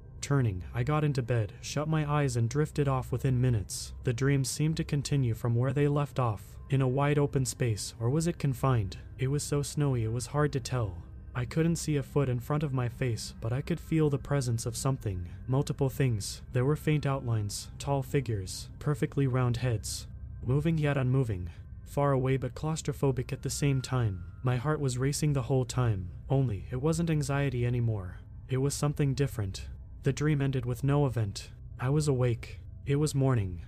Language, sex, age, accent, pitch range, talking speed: English, male, 30-49, American, 115-145 Hz, 195 wpm